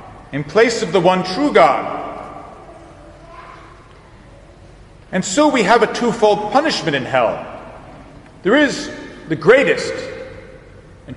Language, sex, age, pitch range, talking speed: English, male, 40-59, 180-240 Hz, 115 wpm